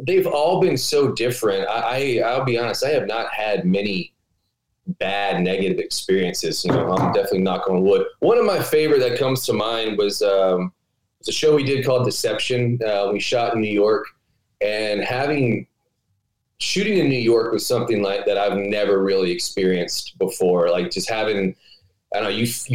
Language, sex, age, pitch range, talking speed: English, male, 20-39, 100-130 Hz, 185 wpm